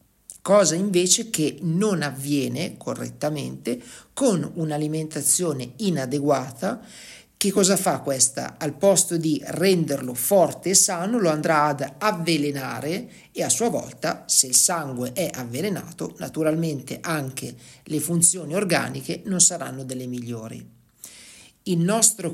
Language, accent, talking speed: Italian, native, 120 wpm